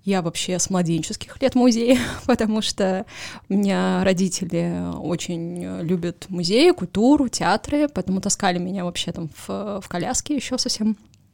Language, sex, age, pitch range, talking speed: Russian, female, 20-39, 185-230 Hz, 140 wpm